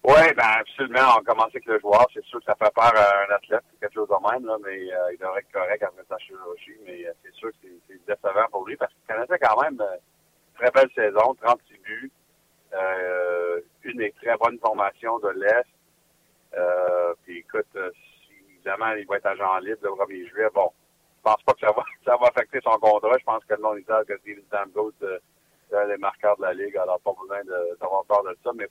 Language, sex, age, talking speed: French, male, 50-69, 230 wpm